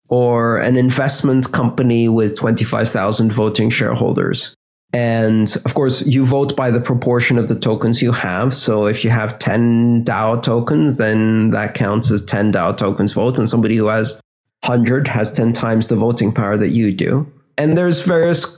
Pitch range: 115-135 Hz